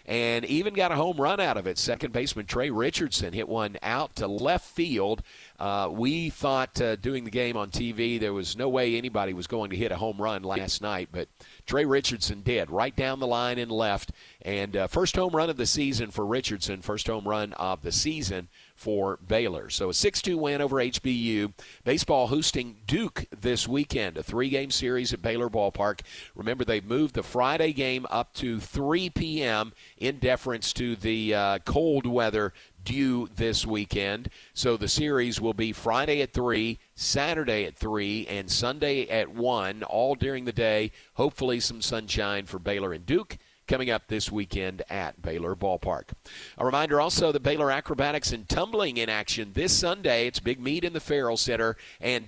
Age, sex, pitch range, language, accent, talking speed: 50-69, male, 105-135 Hz, English, American, 185 wpm